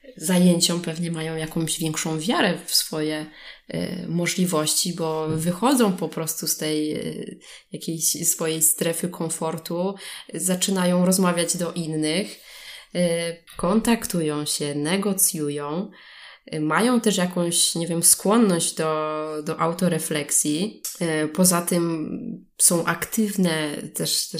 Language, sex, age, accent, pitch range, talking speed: Polish, female, 20-39, native, 155-185 Hz, 100 wpm